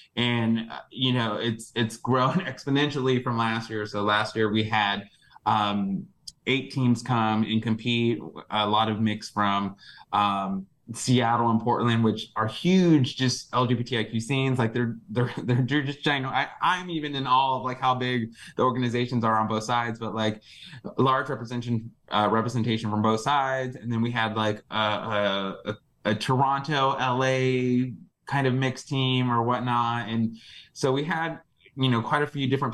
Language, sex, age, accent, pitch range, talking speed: English, male, 20-39, American, 110-130 Hz, 170 wpm